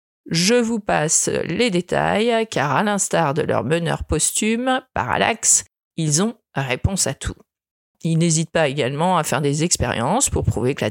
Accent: French